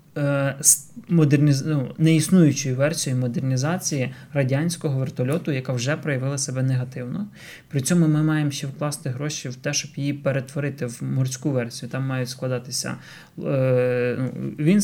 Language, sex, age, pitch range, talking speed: Ukrainian, male, 20-39, 130-155 Hz, 125 wpm